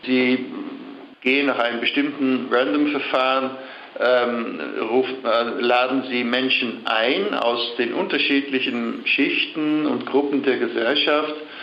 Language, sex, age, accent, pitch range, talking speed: German, male, 60-79, German, 115-140 Hz, 100 wpm